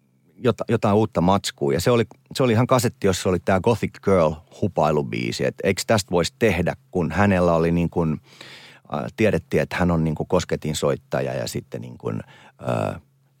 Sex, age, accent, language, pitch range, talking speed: male, 30-49, native, Finnish, 75-115 Hz, 185 wpm